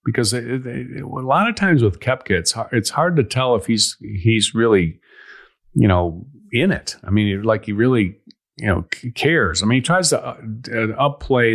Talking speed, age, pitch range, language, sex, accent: 170 wpm, 50-69, 100-130 Hz, English, male, American